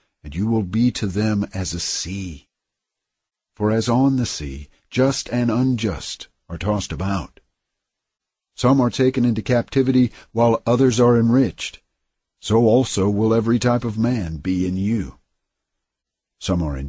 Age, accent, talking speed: 60-79, American, 150 wpm